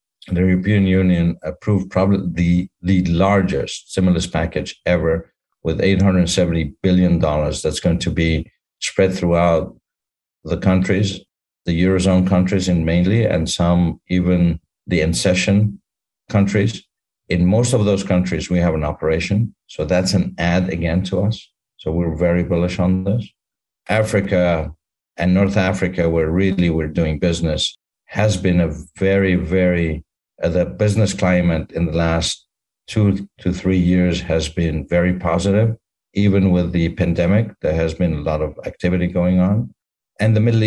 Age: 50-69